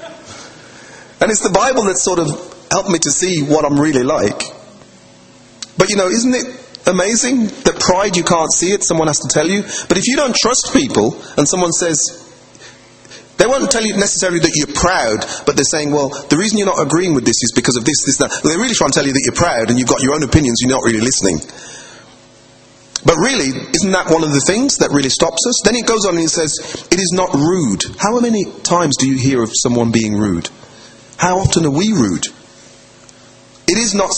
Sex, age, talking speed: male, 30-49, 220 wpm